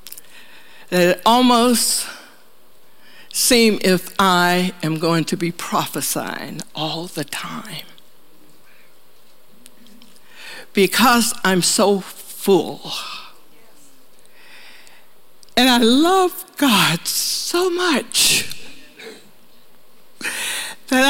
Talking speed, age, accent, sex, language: 70 wpm, 60-79, American, female, English